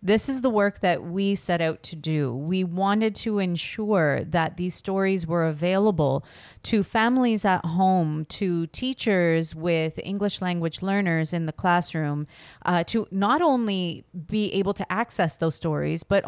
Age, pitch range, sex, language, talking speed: 30-49, 165-200 Hz, female, English, 160 wpm